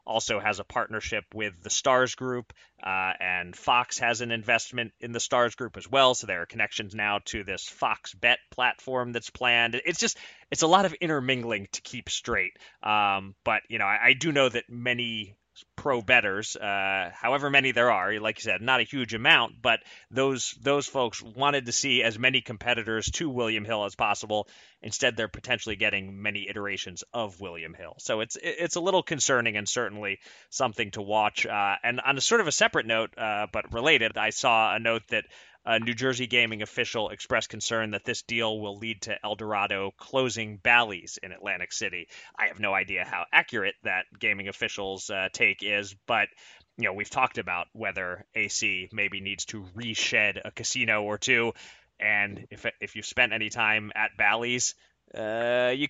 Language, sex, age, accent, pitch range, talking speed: English, male, 30-49, American, 105-125 Hz, 190 wpm